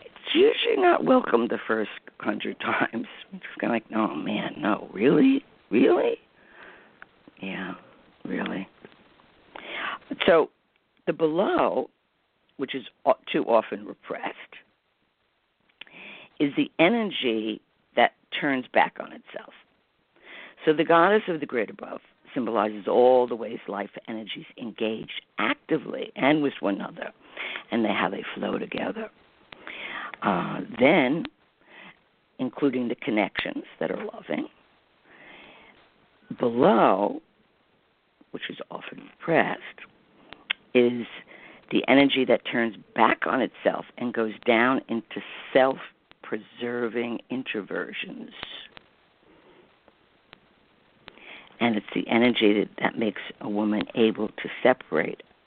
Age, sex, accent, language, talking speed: 50-69, female, American, English, 110 wpm